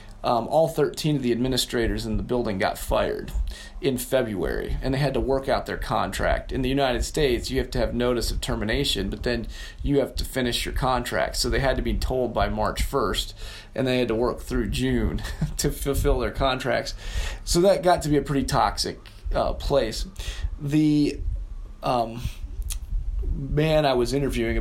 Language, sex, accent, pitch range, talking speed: English, male, American, 115-140 Hz, 185 wpm